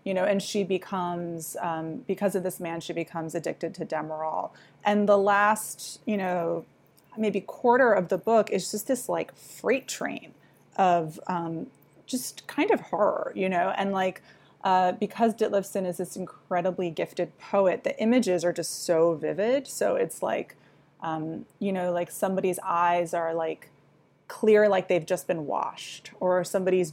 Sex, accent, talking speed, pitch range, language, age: female, American, 165 wpm, 170-215 Hz, English, 20-39